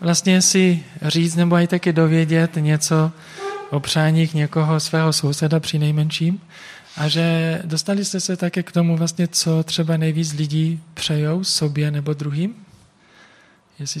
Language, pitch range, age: Czech, 150-175 Hz, 20-39